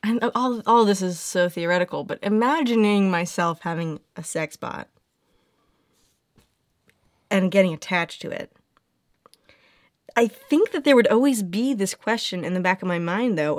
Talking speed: 160 wpm